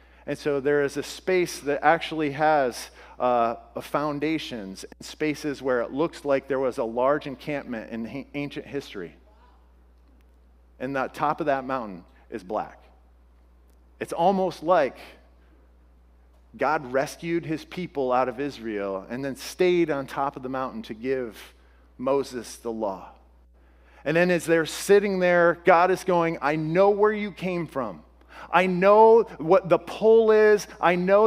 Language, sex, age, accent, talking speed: English, male, 40-59, American, 150 wpm